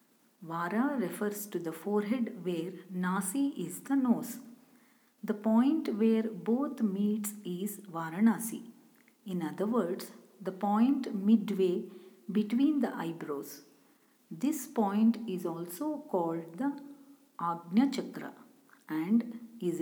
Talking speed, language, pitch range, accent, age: 110 wpm, Kannada, 185-245 Hz, native, 50-69